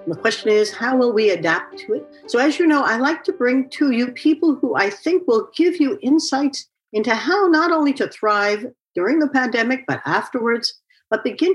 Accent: American